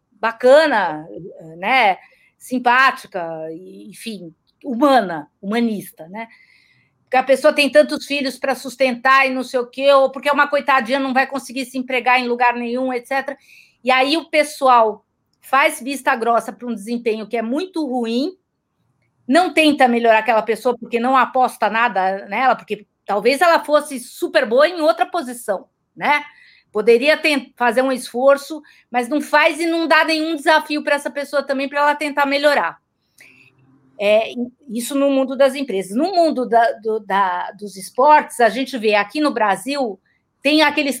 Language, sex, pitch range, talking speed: Portuguese, female, 230-290 Hz, 155 wpm